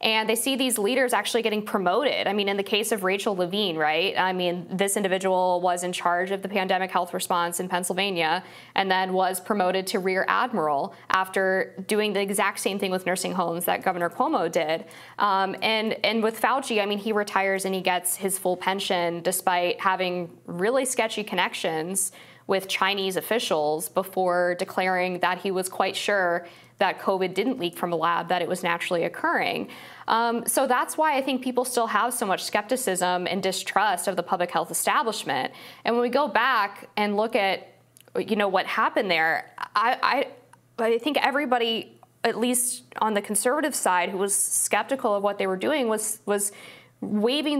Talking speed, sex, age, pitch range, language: 185 wpm, female, 10-29, 185-225 Hz, English